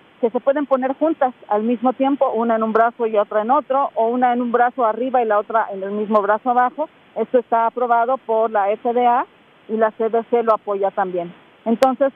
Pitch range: 215-255 Hz